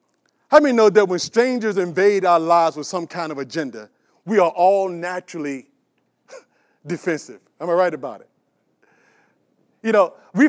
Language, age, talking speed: English, 40-59, 155 wpm